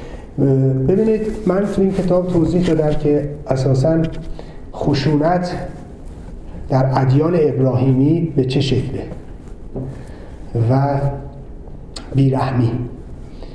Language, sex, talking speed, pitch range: Persian, male, 80 wpm, 125-160 Hz